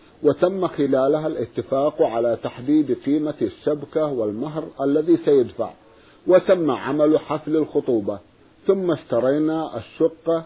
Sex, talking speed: male, 100 wpm